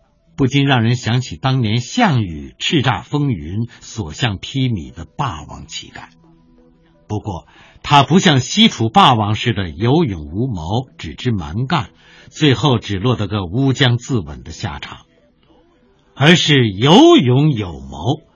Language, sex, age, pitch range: Chinese, male, 60-79, 95-145 Hz